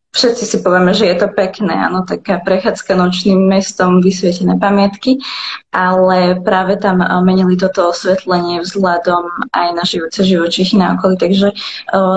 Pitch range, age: 185-215 Hz, 20-39